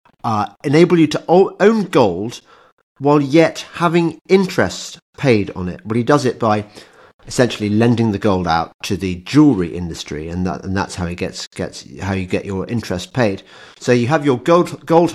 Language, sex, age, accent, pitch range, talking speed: English, male, 40-59, British, 105-145 Hz, 190 wpm